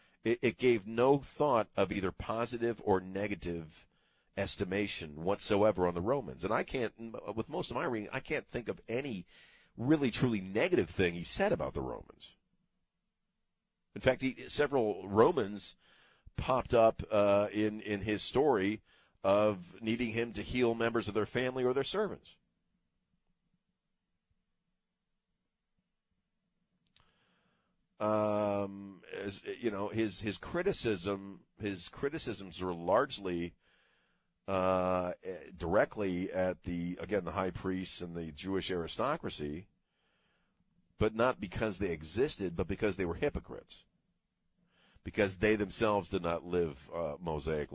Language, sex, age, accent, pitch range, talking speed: English, male, 40-59, American, 85-110 Hz, 125 wpm